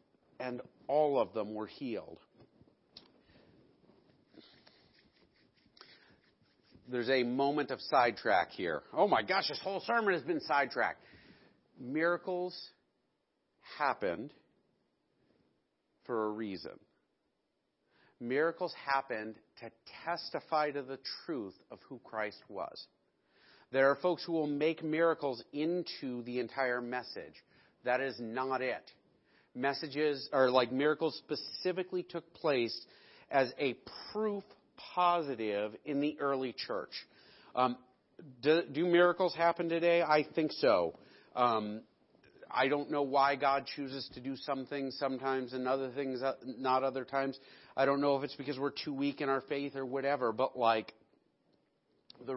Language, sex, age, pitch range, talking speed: English, male, 50-69, 125-150 Hz, 125 wpm